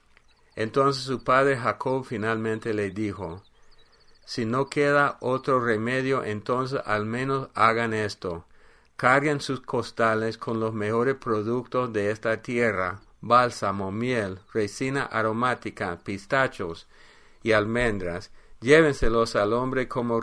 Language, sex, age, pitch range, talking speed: English, male, 50-69, 105-135 Hz, 115 wpm